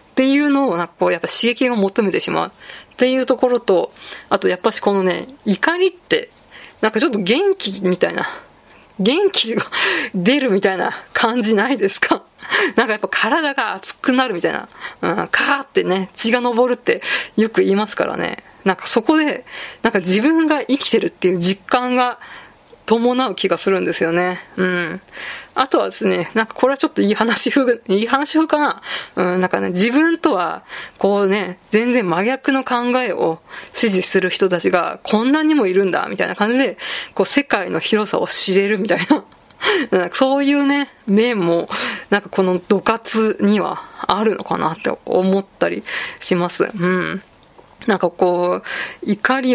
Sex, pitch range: female, 190-265 Hz